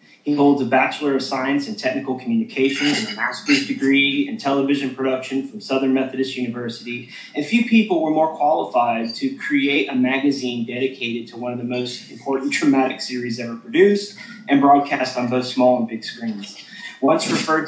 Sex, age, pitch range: male, 20-39, 130-205 Hz